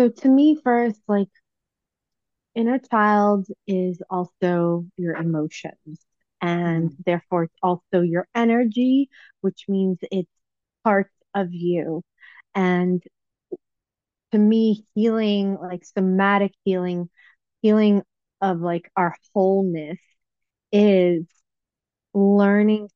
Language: English